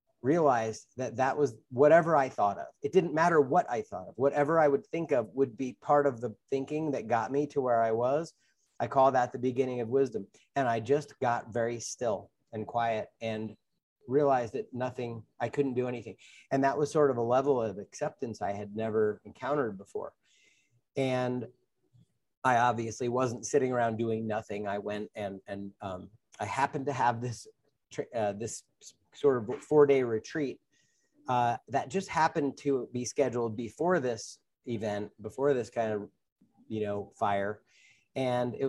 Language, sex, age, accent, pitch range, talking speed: English, male, 30-49, American, 110-135 Hz, 175 wpm